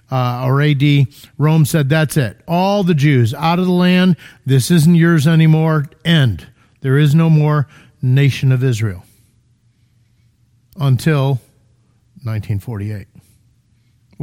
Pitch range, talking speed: 130-185 Hz, 120 wpm